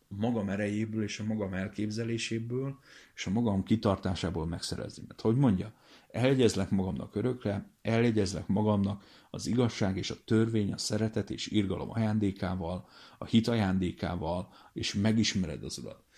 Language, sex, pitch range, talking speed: Hungarian, male, 95-115 Hz, 135 wpm